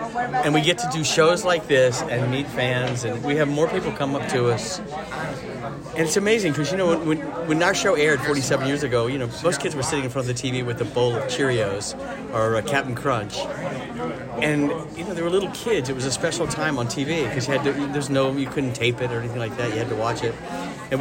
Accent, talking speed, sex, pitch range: American, 240 wpm, male, 125-150 Hz